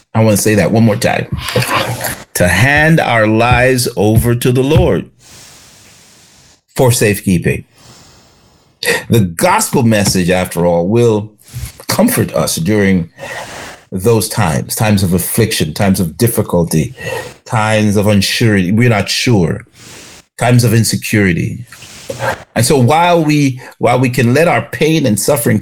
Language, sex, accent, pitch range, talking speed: English, male, American, 100-130 Hz, 130 wpm